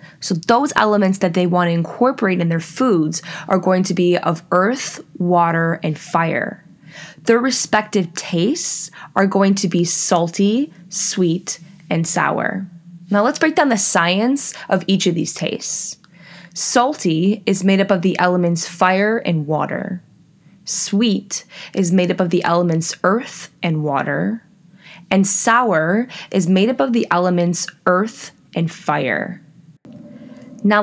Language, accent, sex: English, American, female